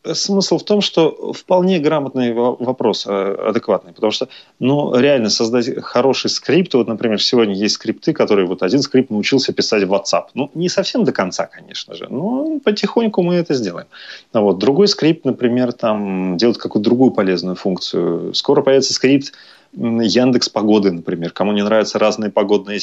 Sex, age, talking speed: male, 30-49, 160 wpm